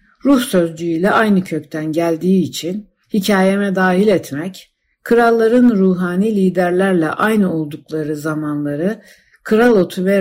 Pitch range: 155-200 Hz